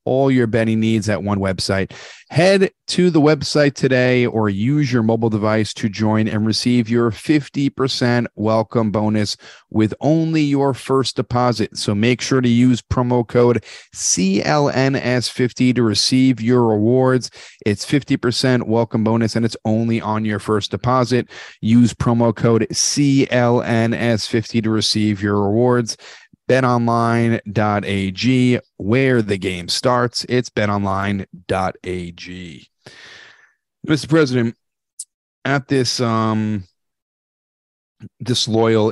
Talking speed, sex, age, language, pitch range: 115 wpm, male, 30-49, English, 105-125 Hz